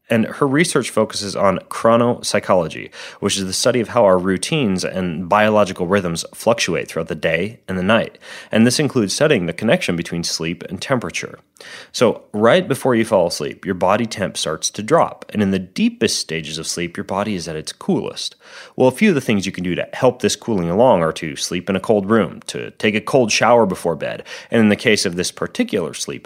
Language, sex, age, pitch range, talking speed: English, male, 30-49, 95-125 Hz, 215 wpm